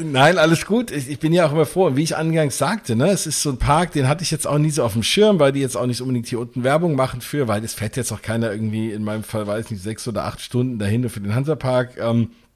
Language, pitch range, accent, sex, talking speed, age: German, 120-145 Hz, German, male, 290 wpm, 50-69